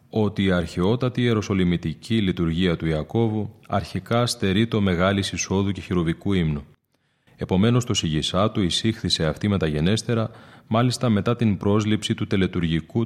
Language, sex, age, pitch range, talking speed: Greek, male, 30-49, 85-110 Hz, 125 wpm